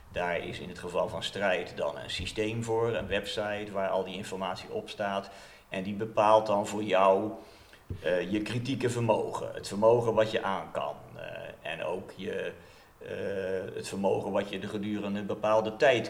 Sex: male